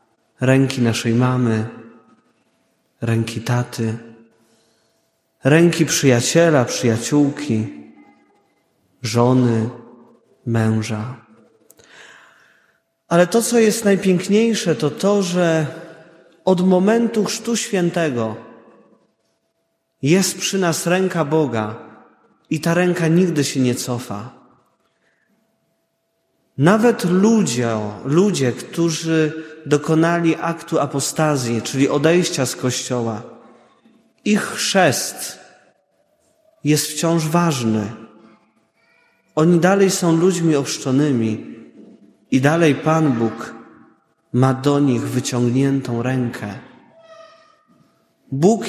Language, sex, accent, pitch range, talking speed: Polish, male, native, 120-175 Hz, 80 wpm